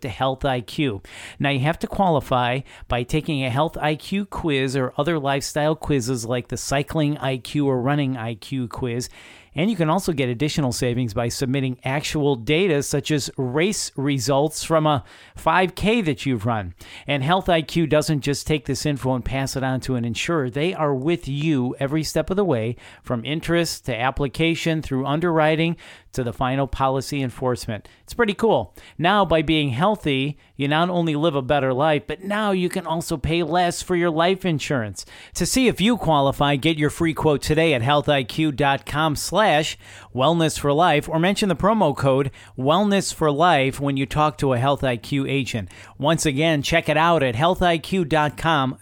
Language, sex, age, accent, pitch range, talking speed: English, male, 40-59, American, 130-160 Hz, 175 wpm